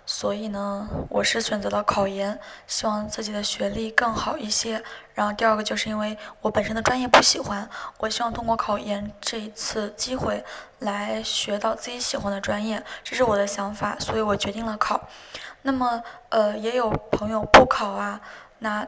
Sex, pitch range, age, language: female, 205-230 Hz, 20-39, Chinese